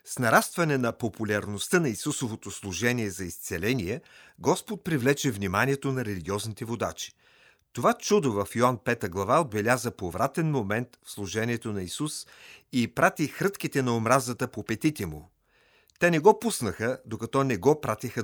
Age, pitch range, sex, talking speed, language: 40-59, 100-140 Hz, male, 145 wpm, Bulgarian